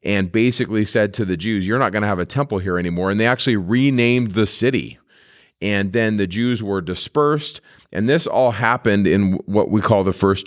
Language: English